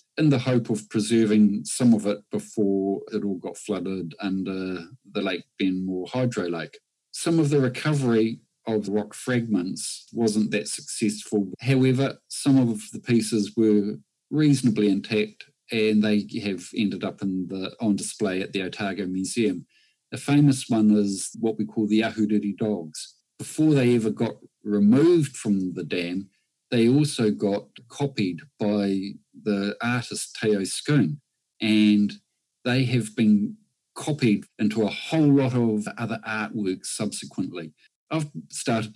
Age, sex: 50-69, male